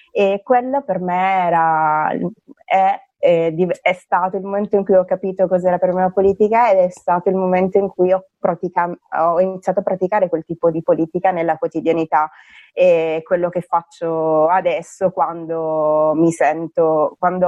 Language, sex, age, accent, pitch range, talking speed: Italian, female, 20-39, native, 165-190 Hz, 165 wpm